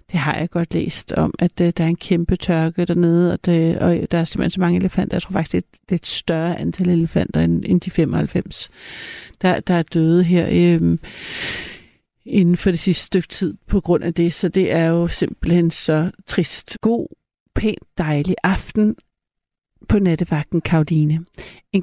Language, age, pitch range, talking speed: Danish, 60-79, 170-195 Hz, 170 wpm